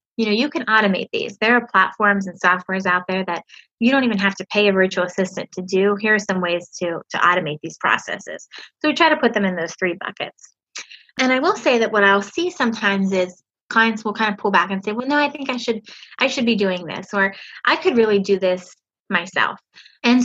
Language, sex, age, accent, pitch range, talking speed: English, female, 20-39, American, 185-235 Hz, 235 wpm